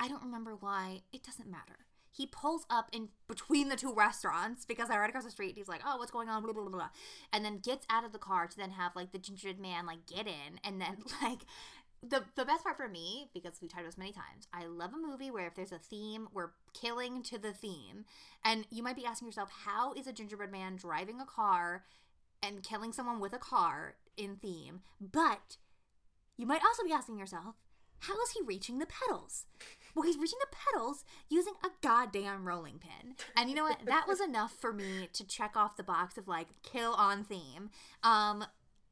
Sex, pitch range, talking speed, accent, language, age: female, 200-280 Hz, 225 wpm, American, English, 20-39